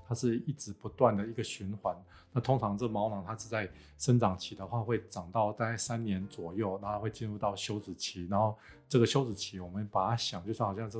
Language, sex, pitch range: Chinese, male, 100-120 Hz